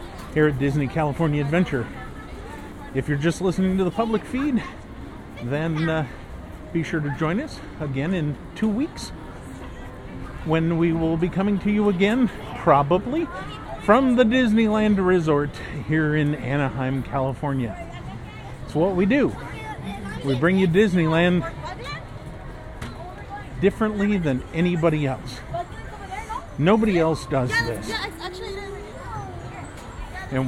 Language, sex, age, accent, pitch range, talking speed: English, male, 50-69, American, 125-200 Hz, 115 wpm